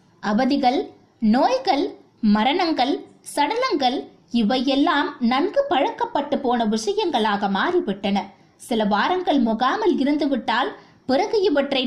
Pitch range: 215-310 Hz